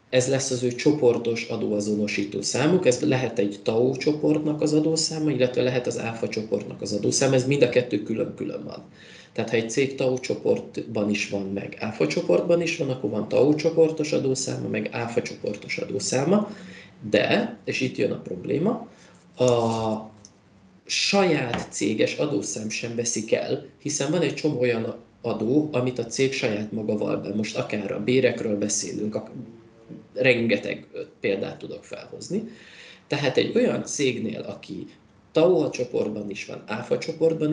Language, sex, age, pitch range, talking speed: Hungarian, male, 20-39, 105-145 Hz, 150 wpm